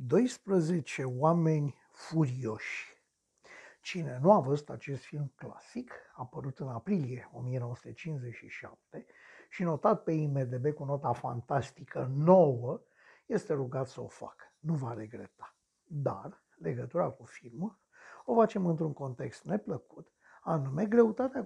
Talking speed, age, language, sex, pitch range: 115 wpm, 60-79, Romanian, male, 135-210 Hz